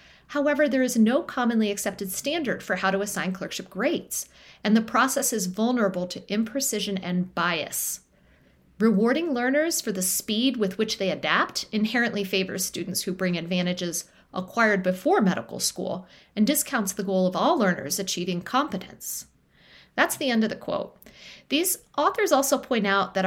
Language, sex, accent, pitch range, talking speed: English, female, American, 190-245 Hz, 160 wpm